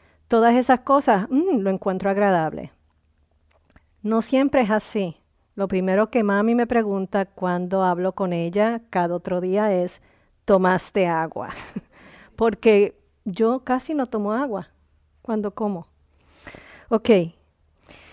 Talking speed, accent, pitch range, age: 115 wpm, American, 180-240 Hz, 40-59